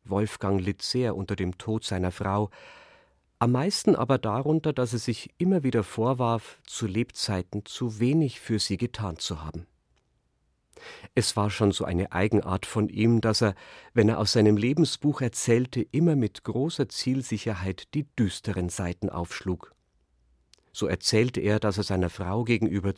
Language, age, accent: German, 50-69, German